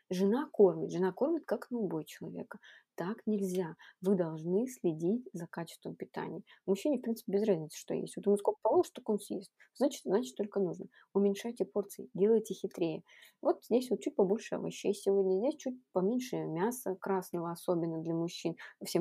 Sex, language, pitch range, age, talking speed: female, Russian, 175-210 Hz, 20-39, 170 wpm